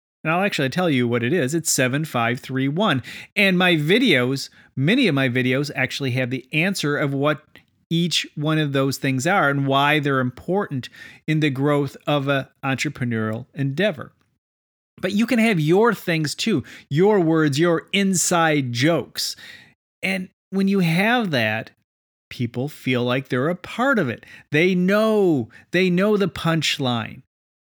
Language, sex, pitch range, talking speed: English, male, 130-170 Hz, 155 wpm